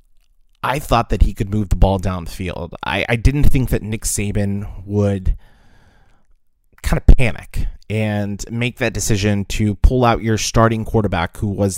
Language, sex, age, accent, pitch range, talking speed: English, male, 30-49, American, 95-115 Hz, 175 wpm